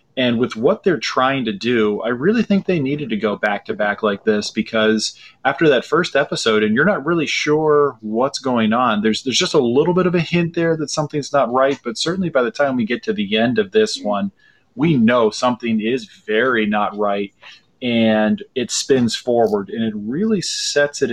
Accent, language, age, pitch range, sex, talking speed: American, English, 30-49, 110-165 Hz, male, 215 wpm